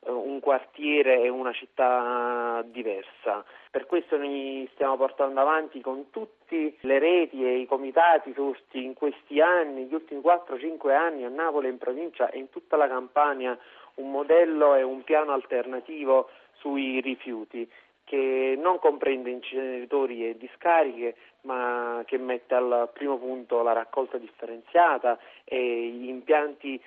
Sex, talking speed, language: male, 140 wpm, Italian